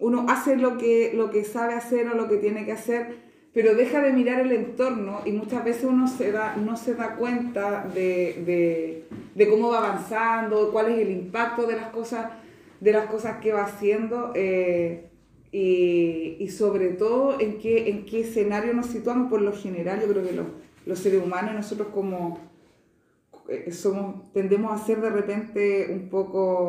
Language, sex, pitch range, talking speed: Spanish, female, 185-235 Hz, 180 wpm